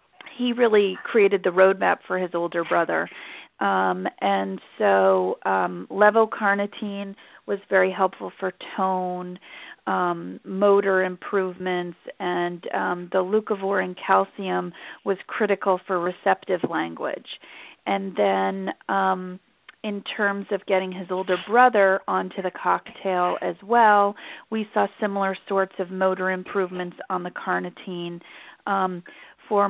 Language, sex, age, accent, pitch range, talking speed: English, female, 40-59, American, 180-205 Hz, 120 wpm